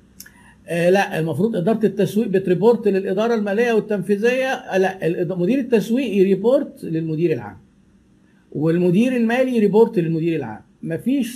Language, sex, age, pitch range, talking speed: Arabic, male, 50-69, 165-225 Hz, 105 wpm